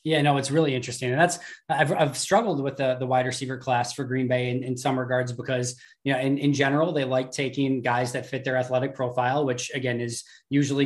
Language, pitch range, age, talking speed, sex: English, 125-145 Hz, 20-39, 230 wpm, male